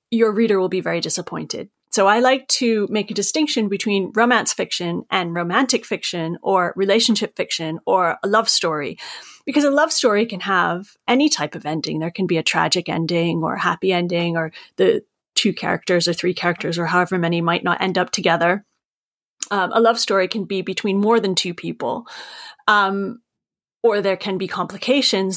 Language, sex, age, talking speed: English, female, 30-49, 185 wpm